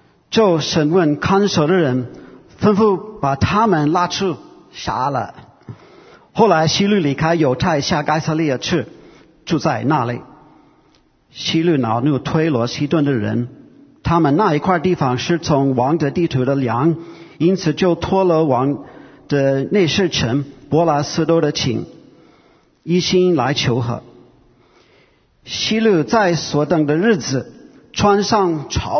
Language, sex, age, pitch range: English, male, 50-69, 135-180 Hz